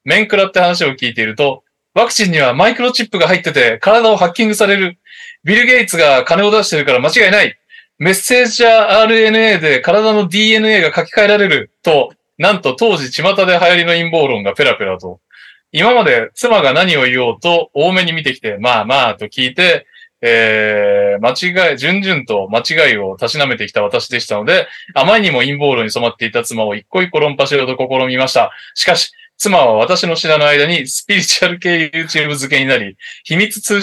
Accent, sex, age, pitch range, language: native, male, 20-39, 135-205 Hz, Japanese